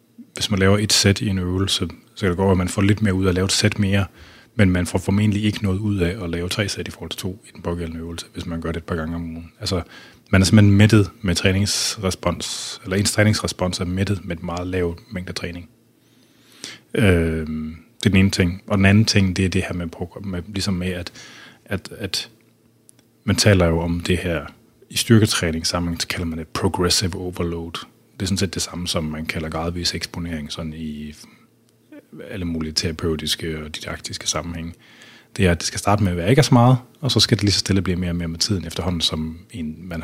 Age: 30-49